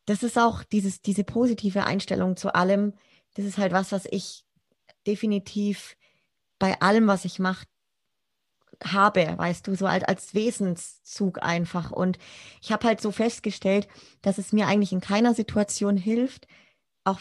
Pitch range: 190-210 Hz